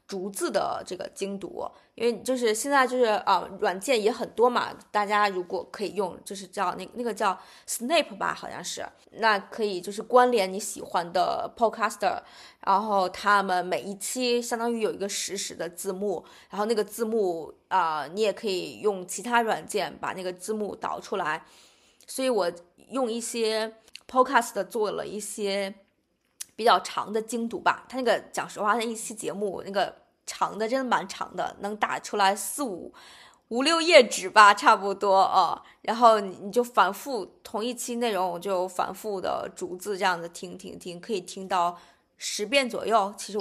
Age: 20-39